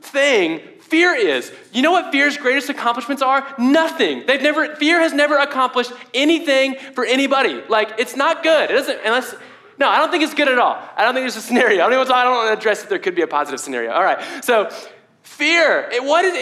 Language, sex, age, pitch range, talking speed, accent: English, male, 20-39, 230-320 Hz, 215 wpm, American